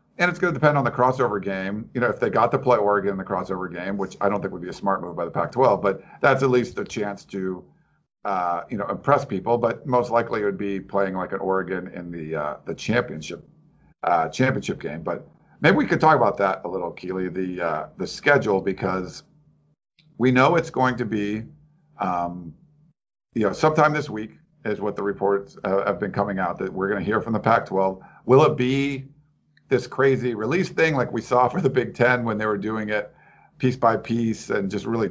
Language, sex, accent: English, male, American